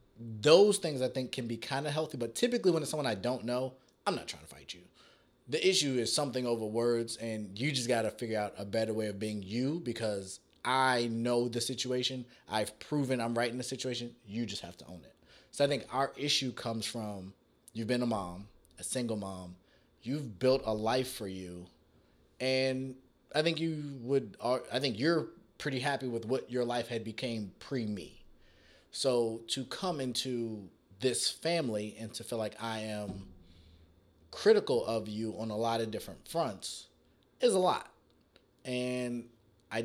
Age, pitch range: 20-39, 100-130 Hz